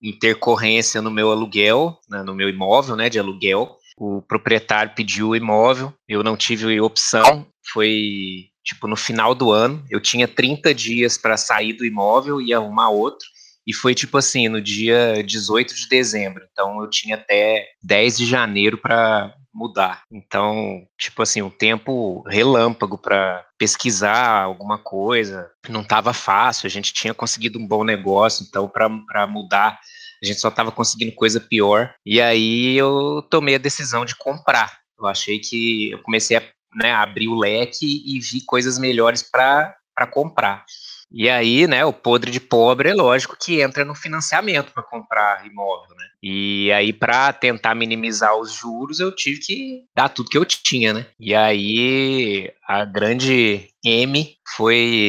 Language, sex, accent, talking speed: Portuguese, male, Brazilian, 160 wpm